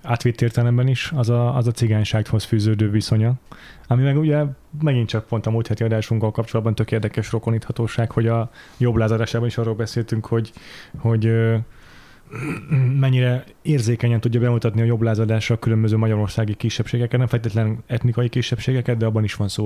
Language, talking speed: Hungarian, 160 wpm